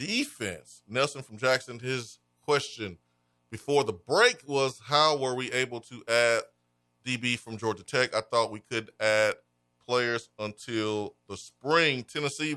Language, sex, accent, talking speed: English, male, American, 145 wpm